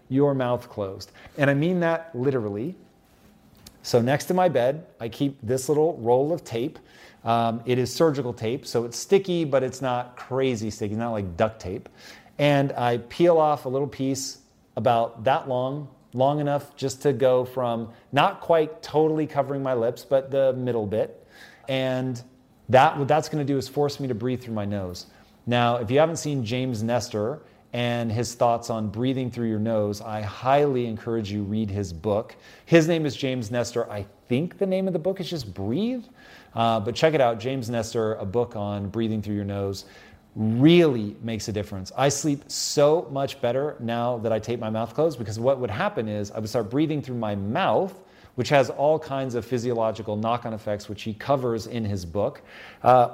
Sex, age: male, 30-49